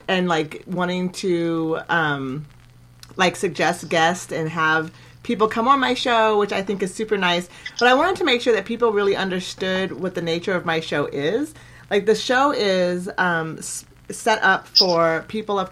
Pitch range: 160-190 Hz